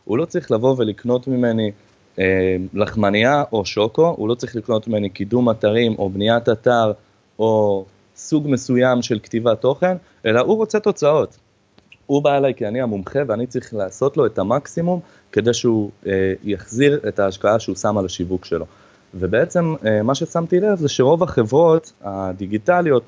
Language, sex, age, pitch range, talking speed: Hebrew, male, 20-39, 105-145 Hz, 160 wpm